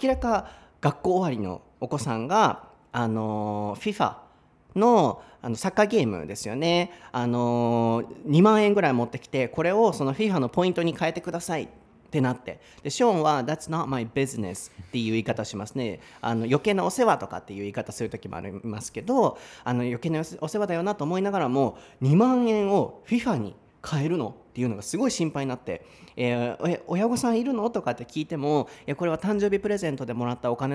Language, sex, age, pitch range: Japanese, male, 30-49, 120-175 Hz